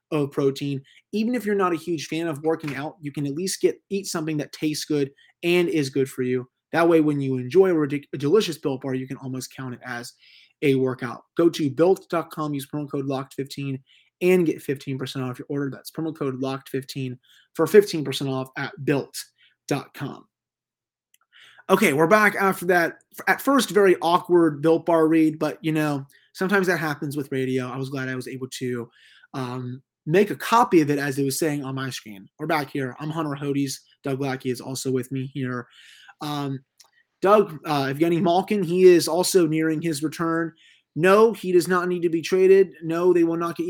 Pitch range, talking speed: 135-170 Hz, 200 wpm